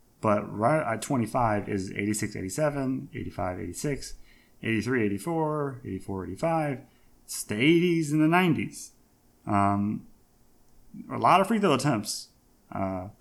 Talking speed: 105 wpm